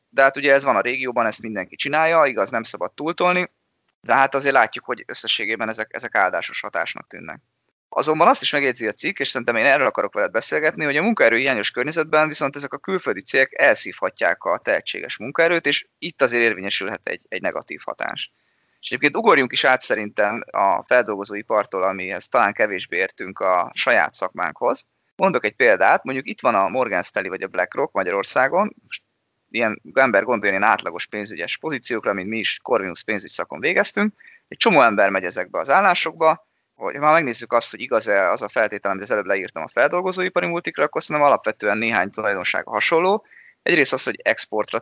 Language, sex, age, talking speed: Hungarian, male, 20-39, 180 wpm